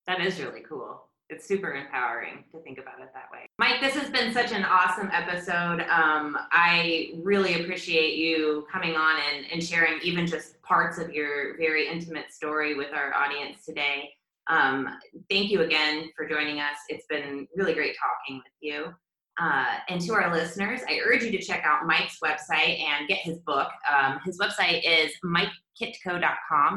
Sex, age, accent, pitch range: female, 20-39, American, 155-190 Hz